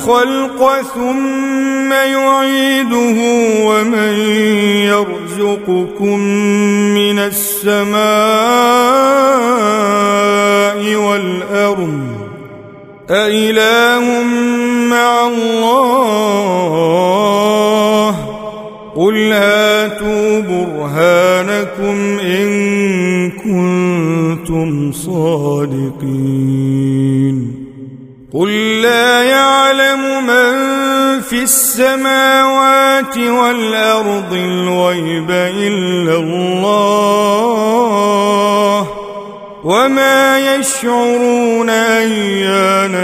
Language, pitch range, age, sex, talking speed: Arabic, 180-235 Hz, 40-59, male, 40 wpm